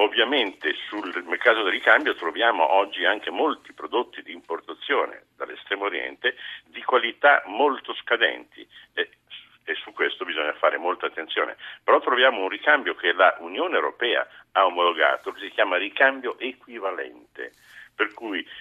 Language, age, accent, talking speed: Italian, 50-69, native, 140 wpm